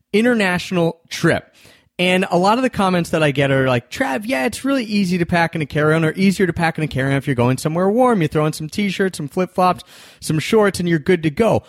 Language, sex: English, male